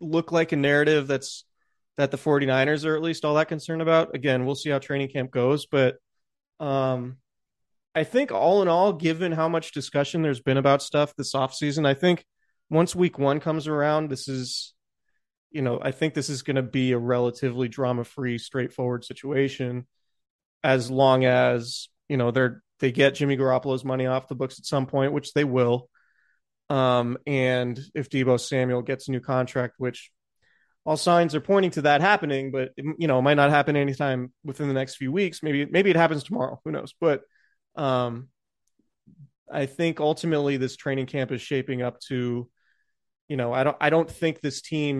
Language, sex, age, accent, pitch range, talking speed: English, male, 30-49, American, 130-150 Hz, 190 wpm